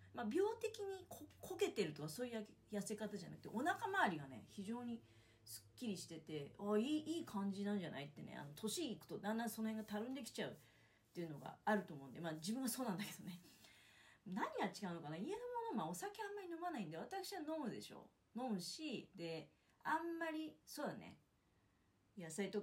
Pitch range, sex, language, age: 155-240 Hz, female, Japanese, 30-49